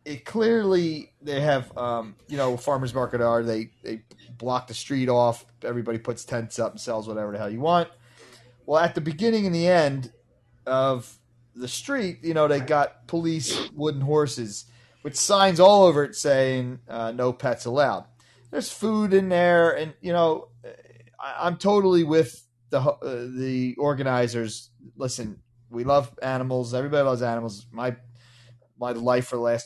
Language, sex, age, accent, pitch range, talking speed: English, male, 30-49, American, 120-150 Hz, 165 wpm